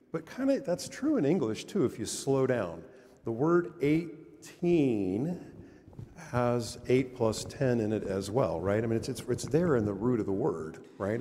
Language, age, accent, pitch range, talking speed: English, 50-69, American, 105-130 Hz, 200 wpm